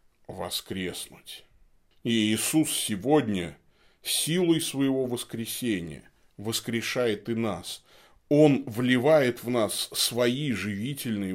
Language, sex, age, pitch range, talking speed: Russian, male, 20-39, 110-155 Hz, 85 wpm